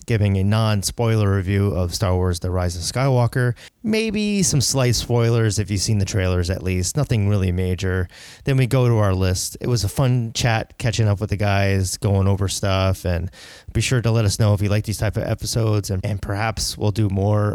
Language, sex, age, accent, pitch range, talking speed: English, male, 30-49, American, 95-115 Hz, 220 wpm